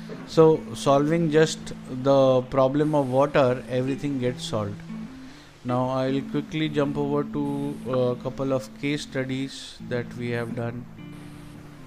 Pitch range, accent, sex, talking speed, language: 125-155 Hz, native, male, 125 wpm, Hindi